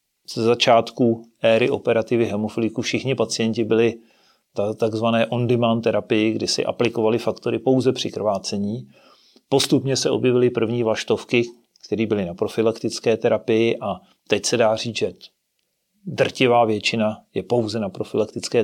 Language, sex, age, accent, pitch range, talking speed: Czech, male, 40-59, native, 110-130 Hz, 130 wpm